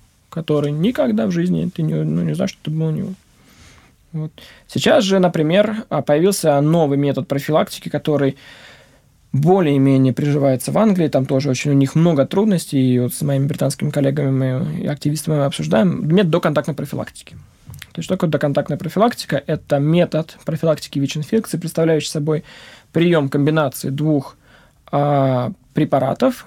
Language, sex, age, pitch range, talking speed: Russian, male, 20-39, 140-170 Hz, 140 wpm